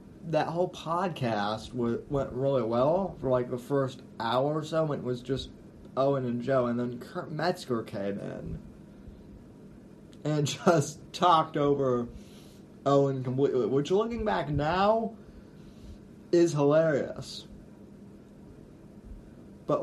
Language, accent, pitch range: English, American, 125-160 Hz